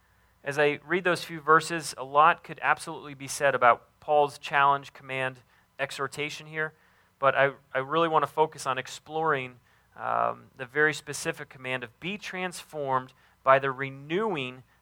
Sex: male